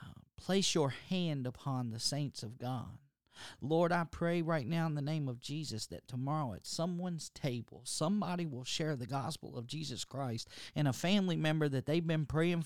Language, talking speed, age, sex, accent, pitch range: English, 185 wpm, 40-59, male, American, 115-150 Hz